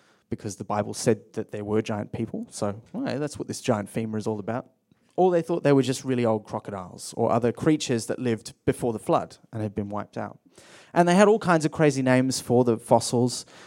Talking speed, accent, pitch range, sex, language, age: 230 wpm, Australian, 110-145 Hz, male, English, 30-49